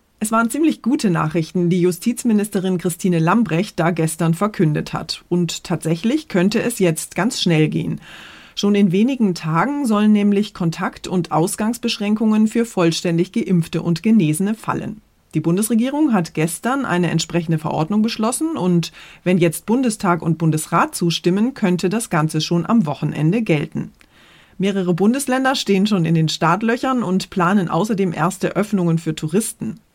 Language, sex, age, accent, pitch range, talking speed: German, female, 30-49, German, 170-215 Hz, 145 wpm